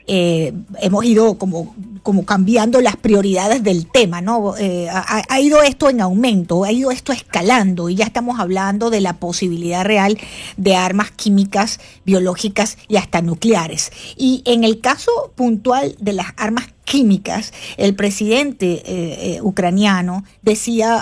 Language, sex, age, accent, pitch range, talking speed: Spanish, female, 50-69, American, 195-245 Hz, 150 wpm